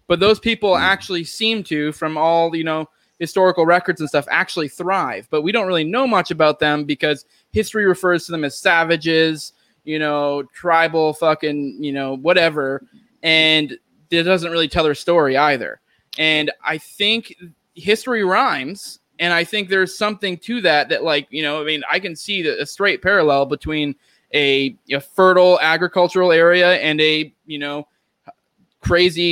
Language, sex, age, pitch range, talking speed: English, male, 20-39, 150-180 Hz, 165 wpm